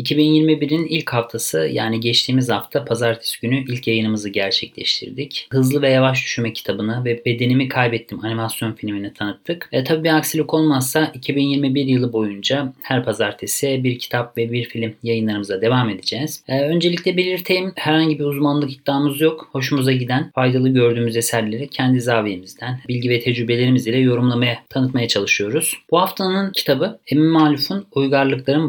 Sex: male